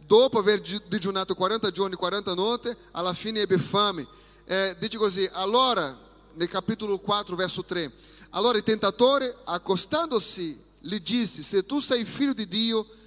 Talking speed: 150 wpm